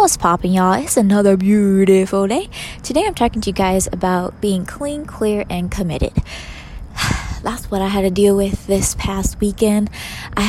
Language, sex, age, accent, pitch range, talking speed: English, female, 20-39, American, 175-200 Hz, 170 wpm